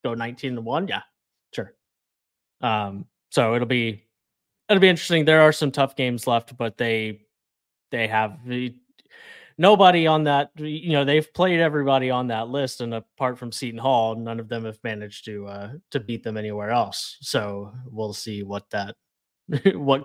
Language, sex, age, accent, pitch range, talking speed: English, male, 20-39, American, 110-135 Hz, 175 wpm